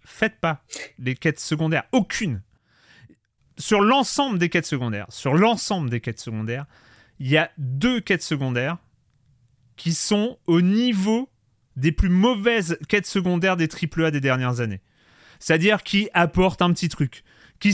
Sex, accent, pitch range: male, French, 150-195 Hz